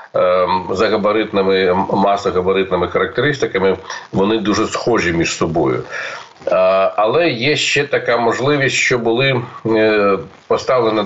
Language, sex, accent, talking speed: Ukrainian, male, native, 90 wpm